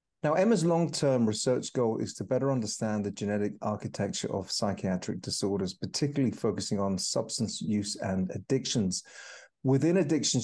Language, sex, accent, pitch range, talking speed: English, male, British, 100-125 Hz, 130 wpm